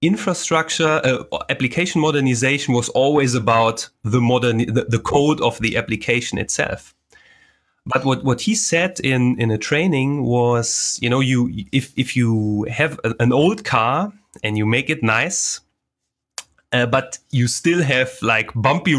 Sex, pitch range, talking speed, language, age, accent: male, 115-155 Hz, 155 wpm, English, 30-49, German